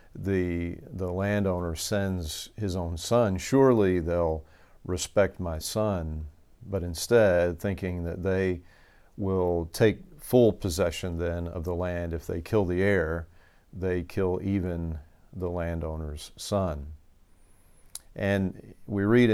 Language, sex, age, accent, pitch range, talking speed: English, male, 50-69, American, 85-100 Hz, 120 wpm